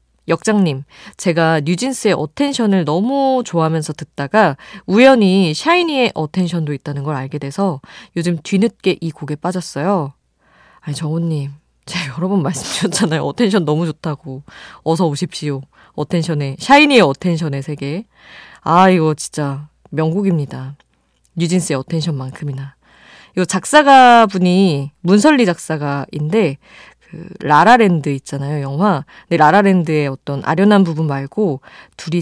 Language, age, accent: Korean, 20-39, native